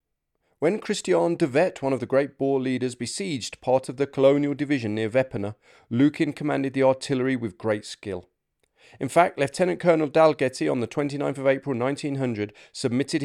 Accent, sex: British, male